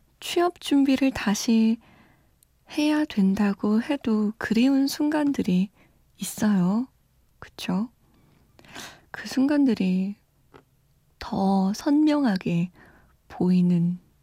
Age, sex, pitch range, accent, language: 20-39, female, 185-255 Hz, native, Korean